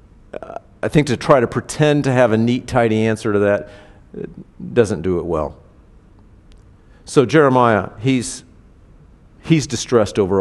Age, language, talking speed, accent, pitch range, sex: 50-69, English, 140 wpm, American, 100-125 Hz, male